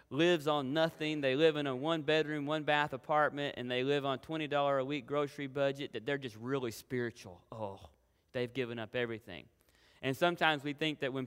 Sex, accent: male, American